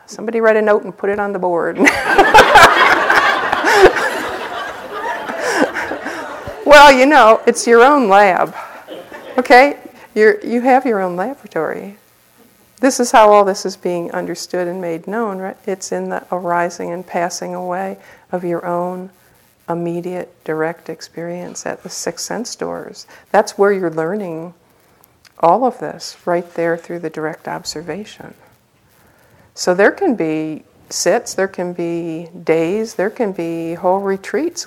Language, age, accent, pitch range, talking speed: English, 50-69, American, 160-200 Hz, 140 wpm